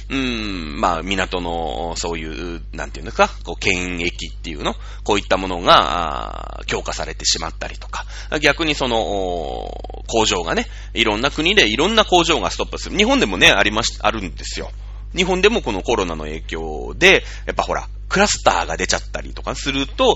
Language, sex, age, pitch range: Japanese, male, 30-49, 90-135 Hz